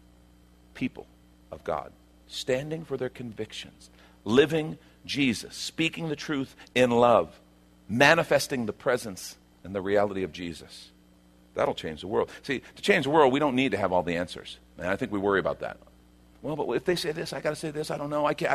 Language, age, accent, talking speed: English, 50-69, American, 195 wpm